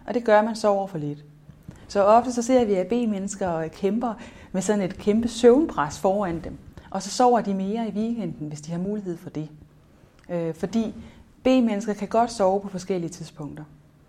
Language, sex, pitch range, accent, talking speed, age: Danish, female, 175-210 Hz, native, 190 wpm, 30-49